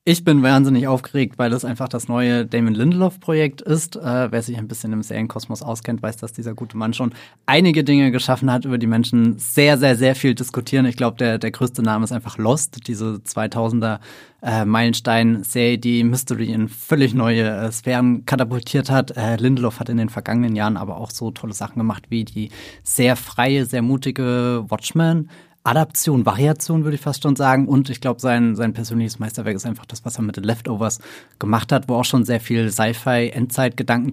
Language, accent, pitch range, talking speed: German, German, 115-135 Hz, 190 wpm